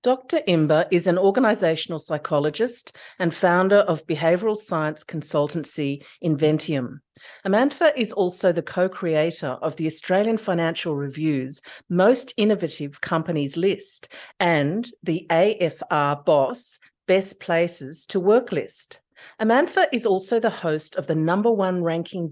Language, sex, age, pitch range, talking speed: English, female, 50-69, 160-215 Hz, 125 wpm